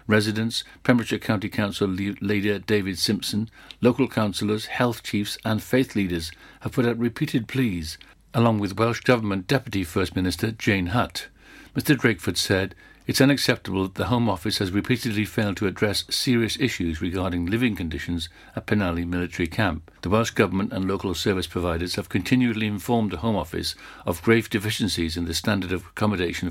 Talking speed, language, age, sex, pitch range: 165 wpm, English, 60-79, male, 95-115 Hz